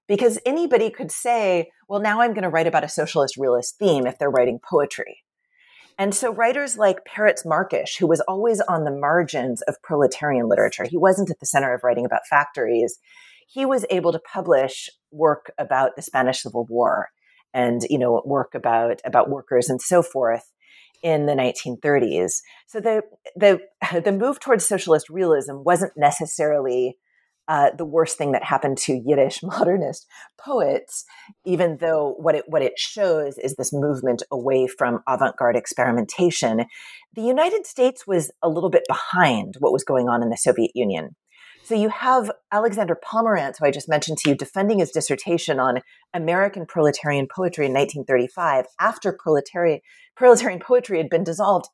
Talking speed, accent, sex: 165 wpm, American, female